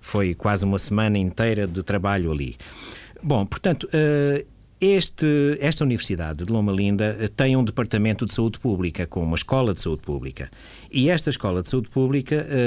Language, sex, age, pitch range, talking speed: Portuguese, male, 50-69, 95-135 Hz, 155 wpm